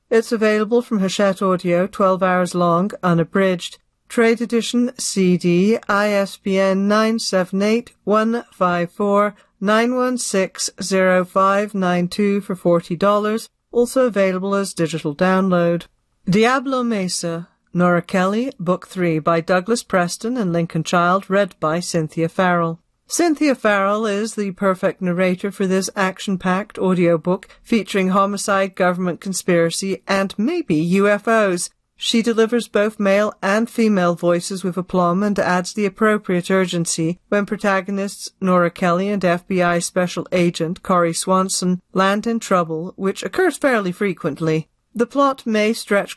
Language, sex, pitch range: English, female, 180-210 Hz